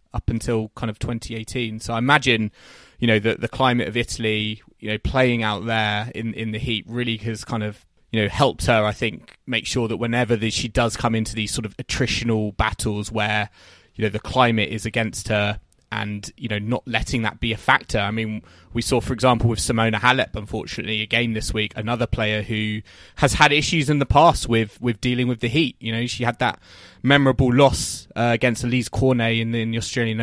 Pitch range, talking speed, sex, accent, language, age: 110-125 Hz, 215 wpm, male, British, English, 20-39